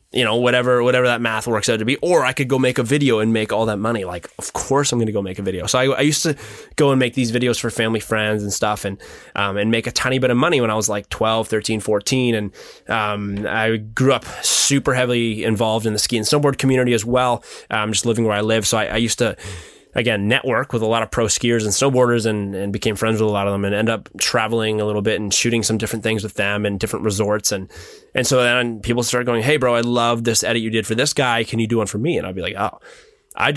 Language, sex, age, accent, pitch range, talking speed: English, male, 20-39, American, 105-125 Hz, 280 wpm